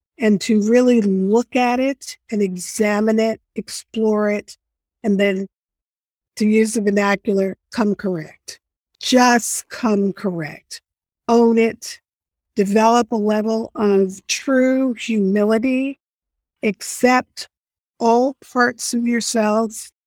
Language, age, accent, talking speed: English, 50-69, American, 105 wpm